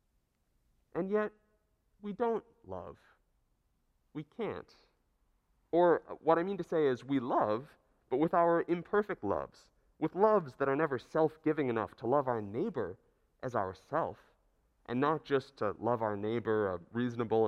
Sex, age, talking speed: male, 30-49, 150 wpm